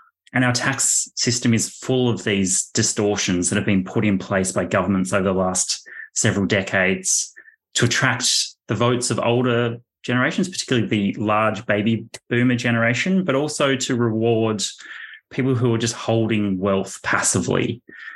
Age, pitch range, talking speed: 20-39, 100-120 Hz, 150 wpm